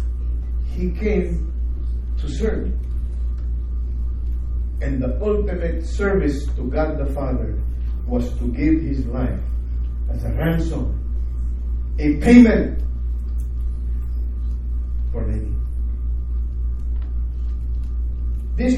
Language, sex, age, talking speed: English, male, 40-59, 80 wpm